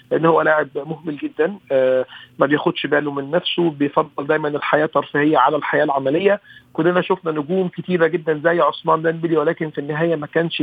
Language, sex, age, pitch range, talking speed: Arabic, male, 40-59, 150-170 Hz, 175 wpm